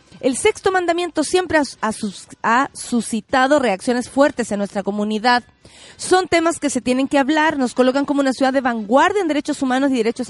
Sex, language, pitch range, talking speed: female, Spanish, 215-295 Hz, 180 wpm